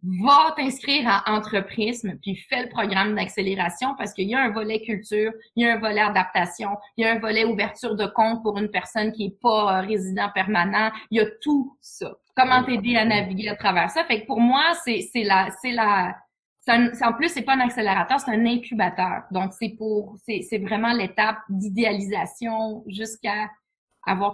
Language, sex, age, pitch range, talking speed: French, female, 20-39, 200-240 Hz, 200 wpm